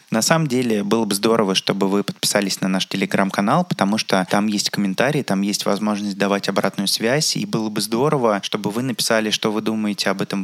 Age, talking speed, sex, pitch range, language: 20-39, 200 wpm, male, 100-115 Hz, Russian